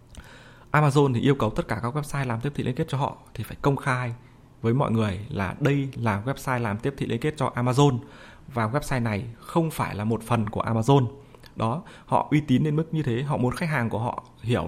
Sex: male